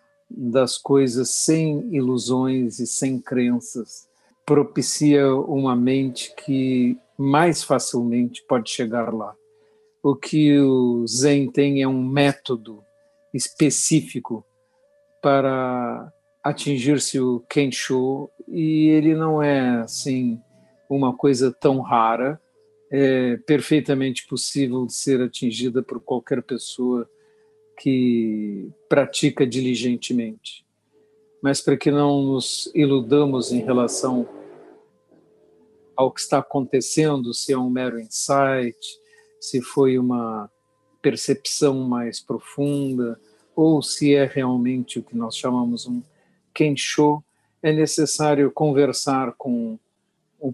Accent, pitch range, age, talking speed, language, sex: Brazilian, 125-150 Hz, 50-69, 105 wpm, Portuguese, male